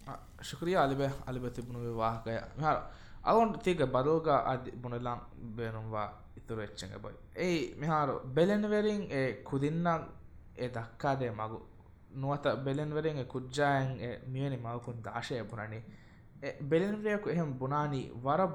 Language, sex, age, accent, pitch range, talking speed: English, male, 20-39, Indian, 120-155 Hz, 145 wpm